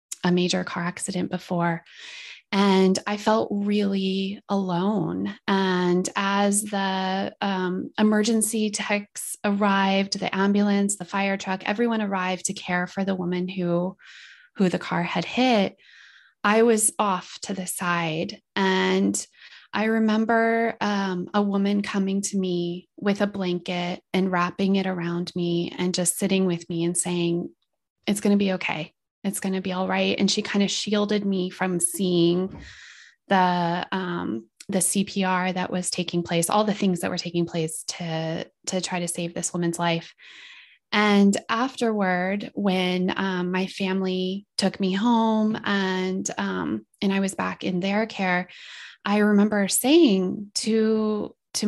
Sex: female